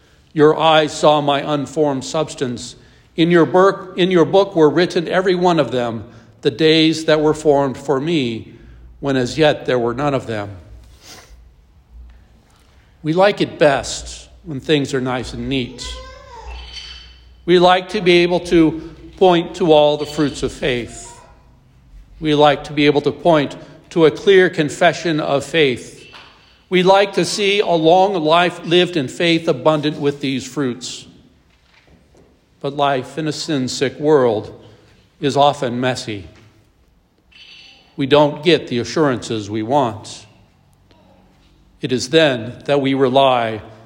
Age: 60-79